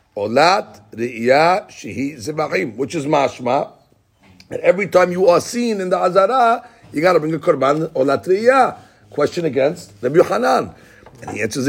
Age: 60-79